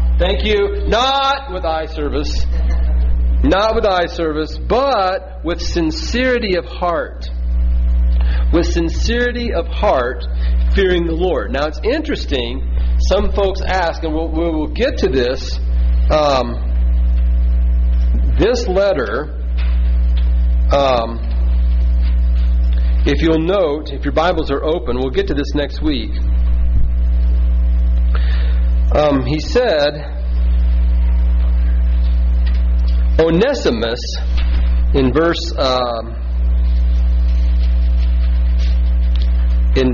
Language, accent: English, American